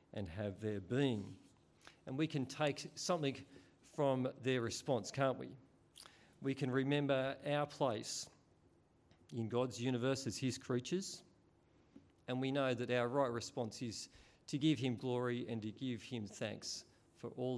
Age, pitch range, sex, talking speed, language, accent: 40-59, 120-150 Hz, male, 150 wpm, English, Australian